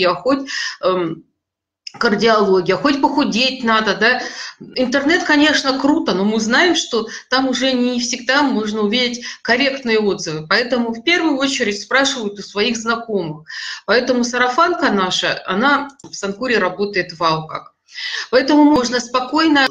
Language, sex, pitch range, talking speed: Russian, female, 195-265 Hz, 130 wpm